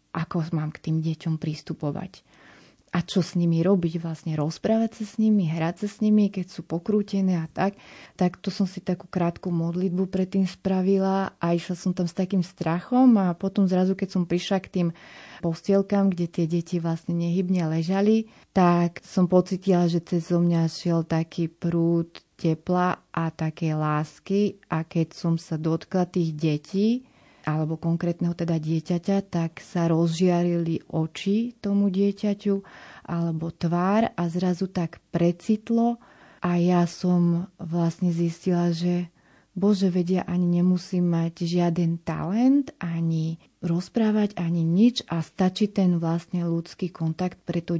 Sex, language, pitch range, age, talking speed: female, Slovak, 165-185 Hz, 30-49, 150 wpm